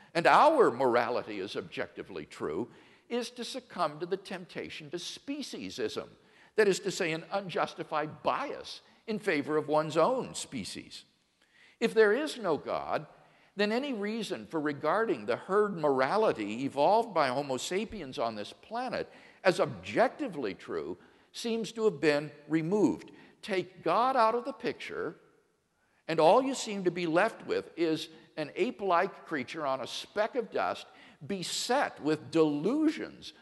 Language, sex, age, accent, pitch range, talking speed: English, male, 60-79, American, 165-245 Hz, 145 wpm